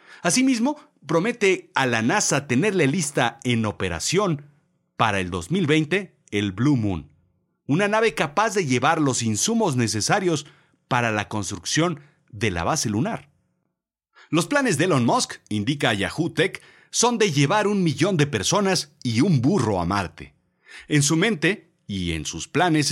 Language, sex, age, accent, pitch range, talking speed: Spanish, male, 40-59, Mexican, 105-170 Hz, 150 wpm